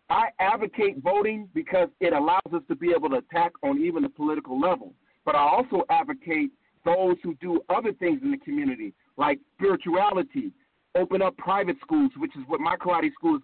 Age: 50-69